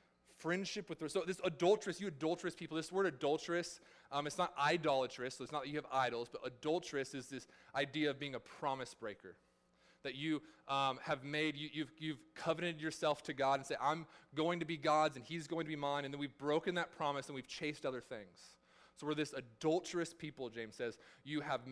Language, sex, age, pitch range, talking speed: English, male, 20-39, 135-170 Hz, 210 wpm